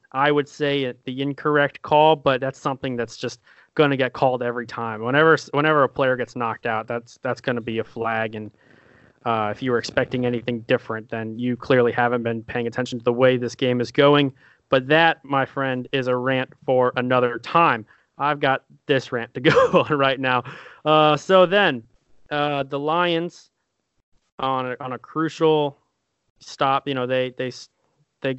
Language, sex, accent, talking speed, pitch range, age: English, male, American, 190 wpm, 125-145 Hz, 20-39